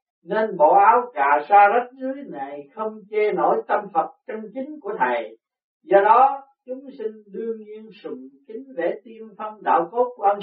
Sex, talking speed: male, 180 wpm